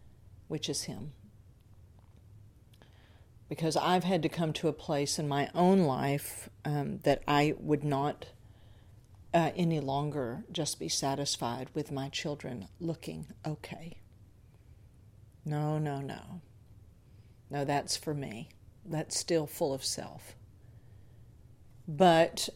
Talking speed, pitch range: 115 wpm, 105-160 Hz